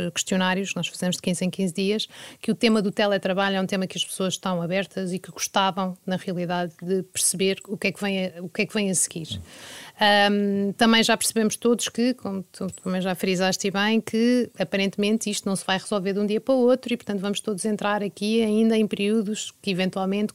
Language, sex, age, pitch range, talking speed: Portuguese, female, 30-49, 185-225 Hz, 225 wpm